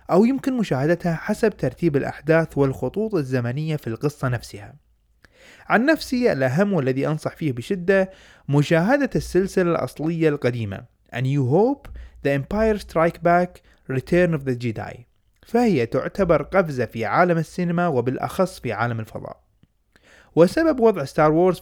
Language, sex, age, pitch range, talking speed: Arabic, male, 20-39, 130-185 Hz, 130 wpm